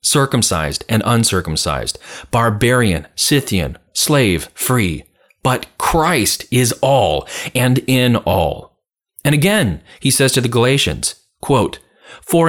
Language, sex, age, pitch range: English, male, 30-49, 100-155 Hz